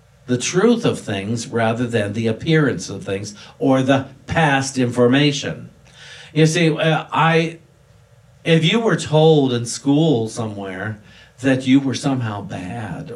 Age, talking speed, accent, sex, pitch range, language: 50-69, 130 wpm, American, male, 110-145 Hz, English